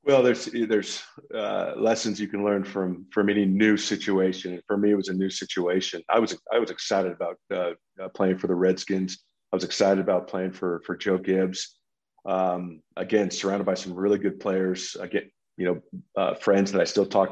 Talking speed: 200 wpm